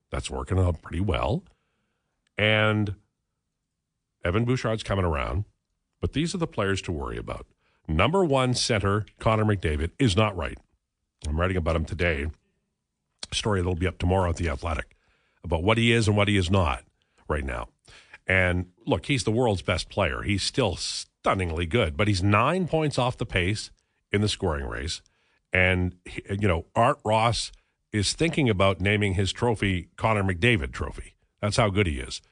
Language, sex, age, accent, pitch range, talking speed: English, male, 50-69, American, 90-115 Hz, 175 wpm